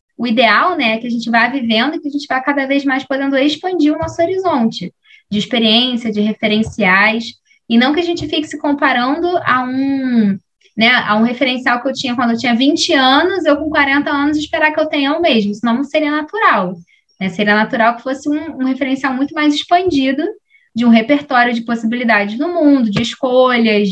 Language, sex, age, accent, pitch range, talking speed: Portuguese, female, 10-29, Brazilian, 225-300 Hz, 200 wpm